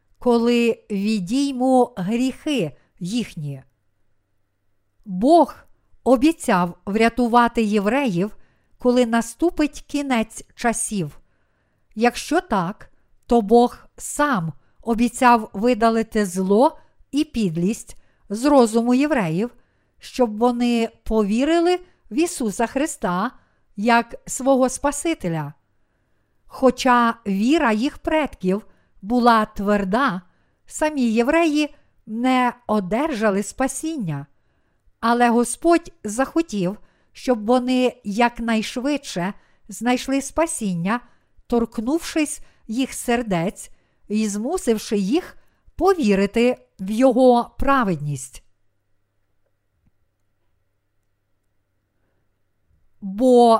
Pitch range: 185-255 Hz